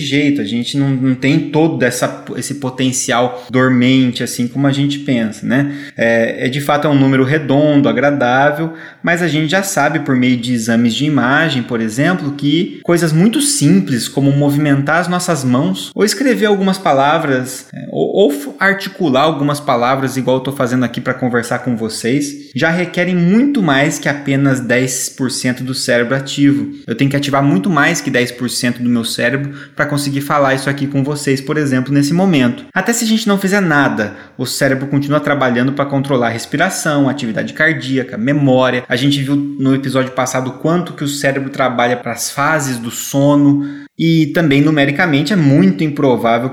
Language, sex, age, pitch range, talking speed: Portuguese, male, 20-39, 130-150 Hz, 180 wpm